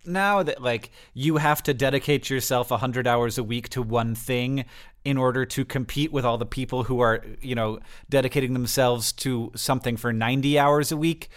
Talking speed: 195 wpm